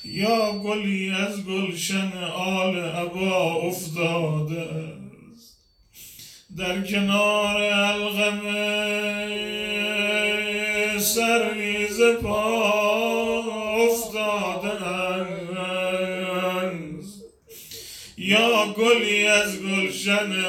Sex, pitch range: male, 185-225 Hz